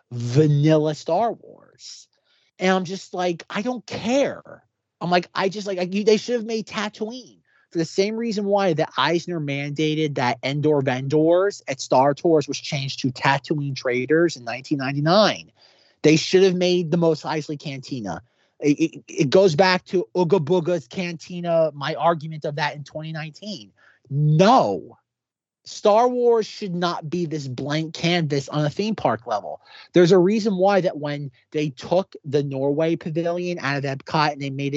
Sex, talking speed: male, 165 wpm